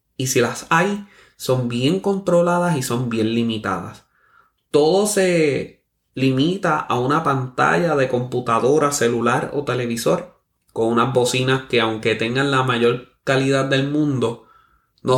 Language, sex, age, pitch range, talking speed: Spanish, male, 20-39, 110-135 Hz, 135 wpm